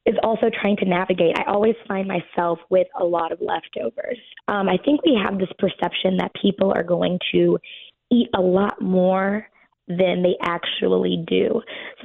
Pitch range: 175-235 Hz